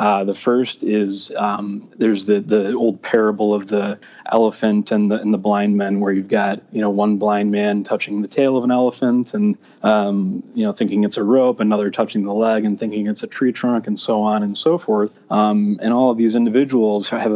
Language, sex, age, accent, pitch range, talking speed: English, male, 20-39, American, 105-120 Hz, 220 wpm